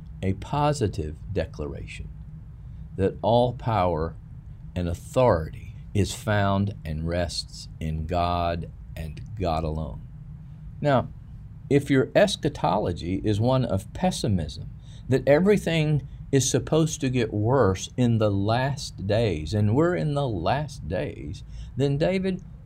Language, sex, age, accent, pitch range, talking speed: English, male, 50-69, American, 90-140 Hz, 115 wpm